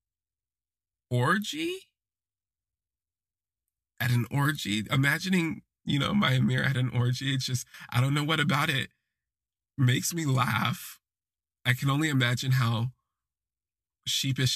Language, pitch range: English, 100-130 Hz